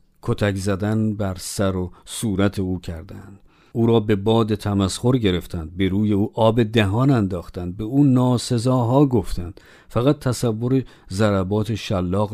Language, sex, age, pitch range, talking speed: Persian, male, 50-69, 100-125 Hz, 135 wpm